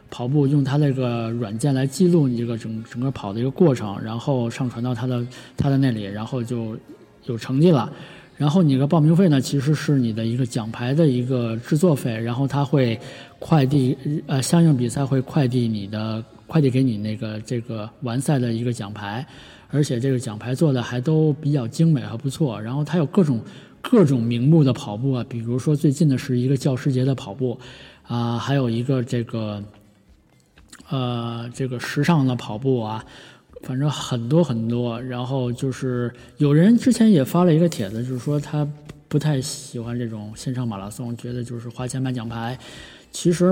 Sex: male